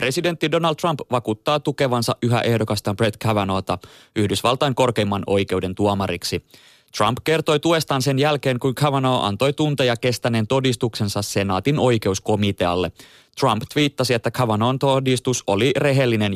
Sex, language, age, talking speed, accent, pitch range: male, Finnish, 20-39, 120 wpm, native, 105-135 Hz